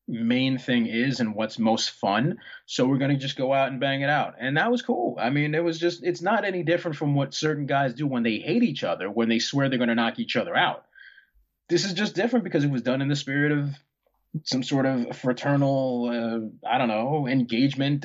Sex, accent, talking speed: male, American, 240 wpm